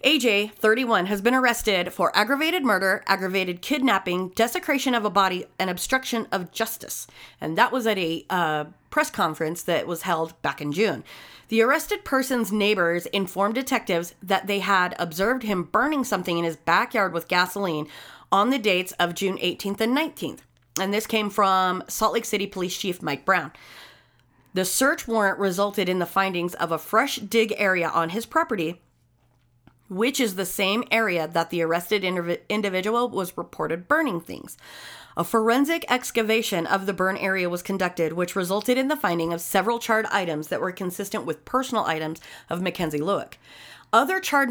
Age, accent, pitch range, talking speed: 30-49, American, 175-225 Hz, 170 wpm